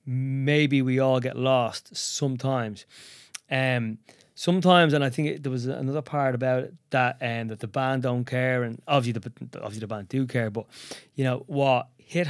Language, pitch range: English, 125-150 Hz